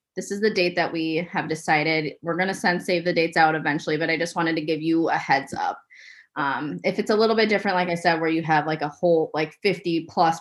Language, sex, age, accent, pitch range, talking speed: English, female, 20-39, American, 155-185 Hz, 265 wpm